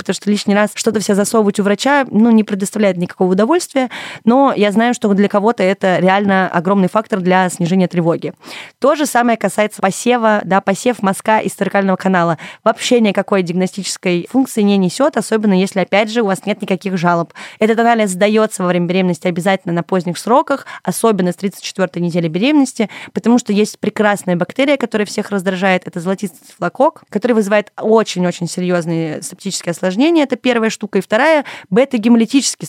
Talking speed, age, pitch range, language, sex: 170 wpm, 20-39, 185-230 Hz, Russian, female